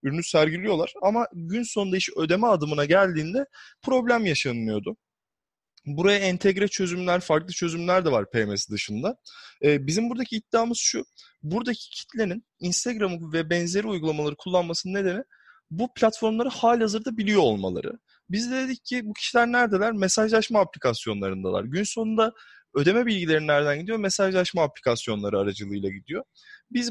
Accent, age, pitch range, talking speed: native, 20-39, 150-220 Hz, 130 wpm